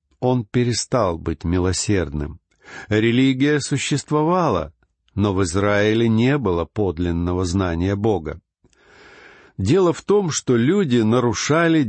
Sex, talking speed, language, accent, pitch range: male, 100 wpm, Russian, native, 100-145 Hz